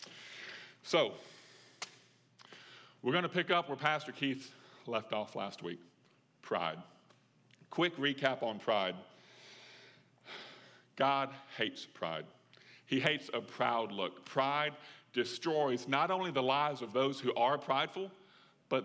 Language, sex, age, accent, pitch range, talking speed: English, male, 50-69, American, 125-160 Hz, 120 wpm